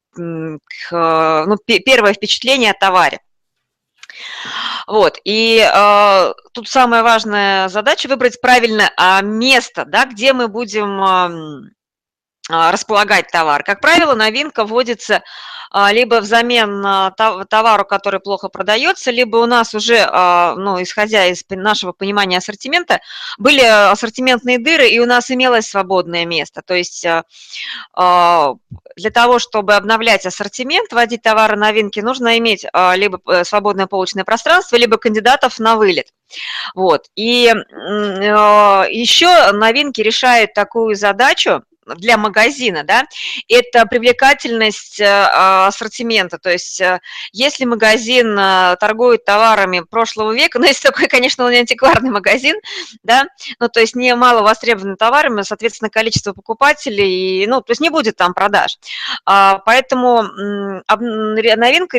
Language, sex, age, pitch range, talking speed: Russian, female, 20-39, 200-245 Hz, 115 wpm